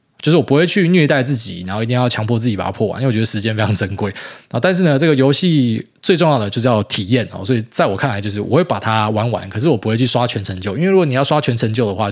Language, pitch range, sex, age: Chinese, 115-150 Hz, male, 20-39